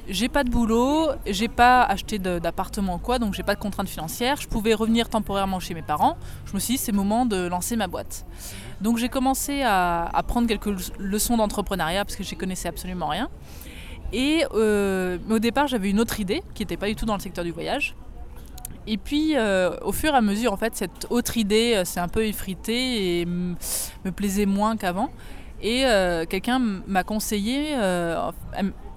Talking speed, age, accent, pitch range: 205 wpm, 20-39, French, 180-235 Hz